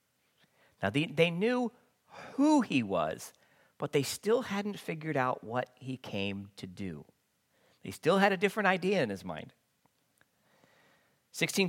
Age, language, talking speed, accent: 40-59, English, 145 wpm, American